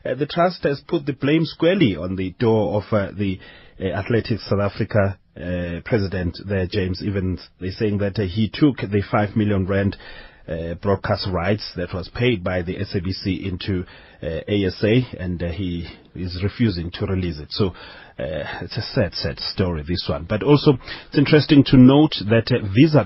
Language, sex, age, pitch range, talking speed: English, male, 30-49, 95-120 Hz, 185 wpm